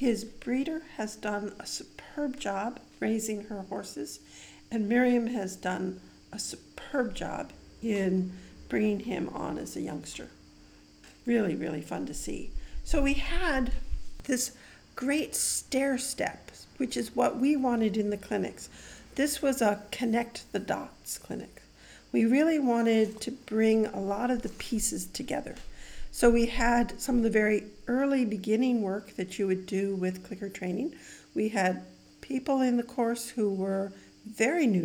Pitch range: 195-245 Hz